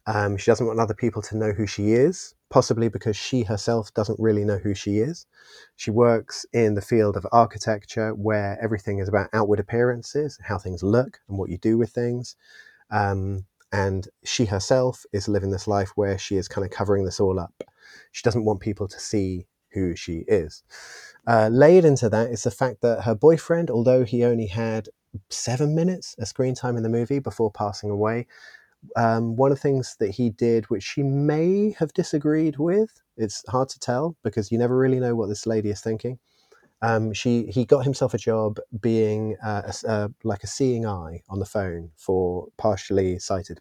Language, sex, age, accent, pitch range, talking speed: English, male, 30-49, British, 100-120 Hz, 195 wpm